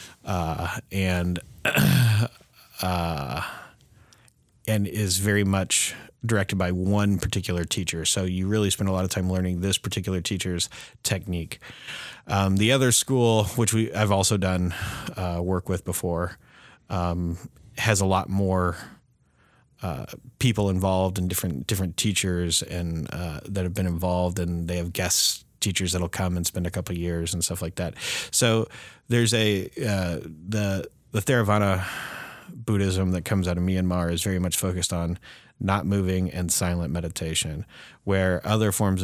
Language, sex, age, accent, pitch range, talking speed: English, male, 30-49, American, 90-105 Hz, 150 wpm